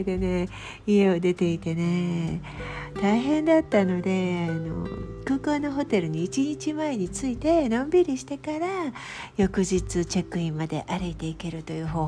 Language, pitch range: Japanese, 180-295 Hz